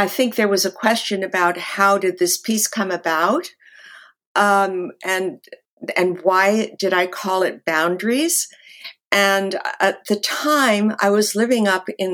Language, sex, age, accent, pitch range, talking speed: English, female, 60-79, American, 175-210 Hz, 155 wpm